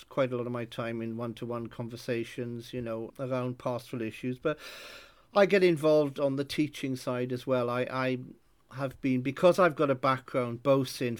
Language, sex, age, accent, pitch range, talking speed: English, male, 50-69, British, 120-140 Hz, 190 wpm